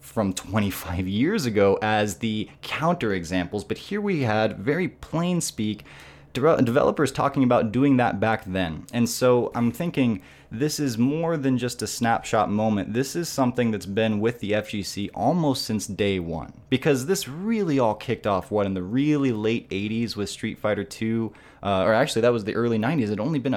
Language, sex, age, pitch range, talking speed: English, male, 20-39, 100-125 Hz, 190 wpm